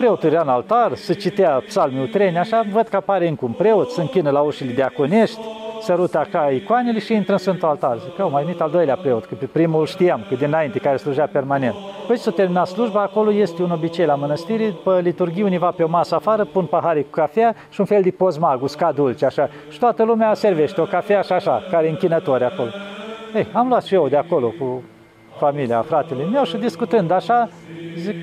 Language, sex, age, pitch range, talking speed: Romanian, male, 40-59, 160-220 Hz, 210 wpm